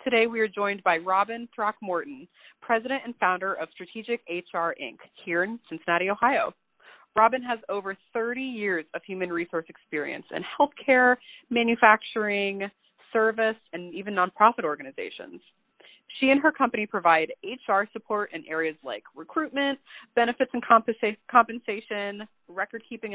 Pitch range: 180-235 Hz